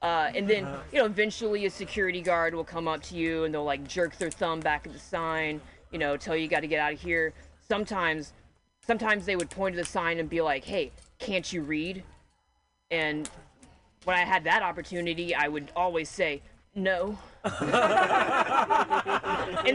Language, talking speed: English, 185 wpm